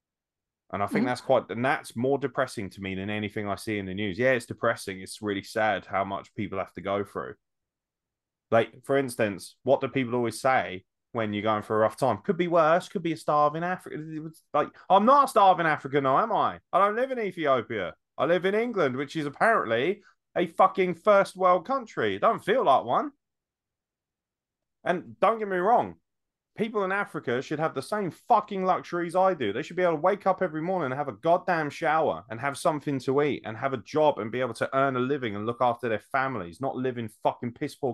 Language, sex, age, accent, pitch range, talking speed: English, male, 20-39, British, 110-175 Hz, 220 wpm